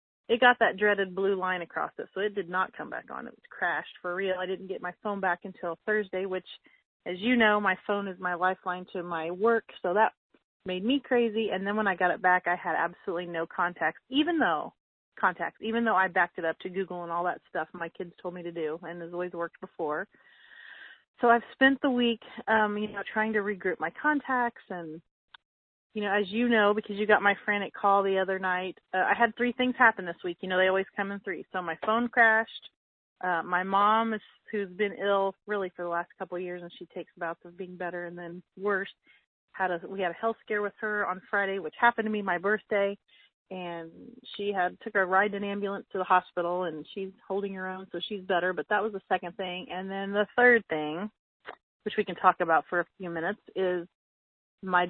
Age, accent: 30-49, American